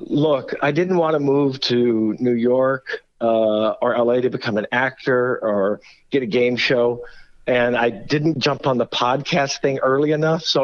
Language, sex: English, male